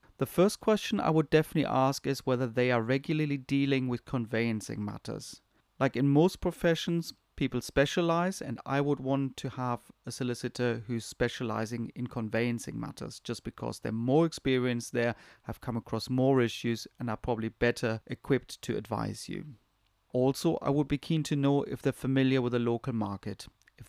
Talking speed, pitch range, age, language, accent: 175 wpm, 115-140 Hz, 30-49, English, German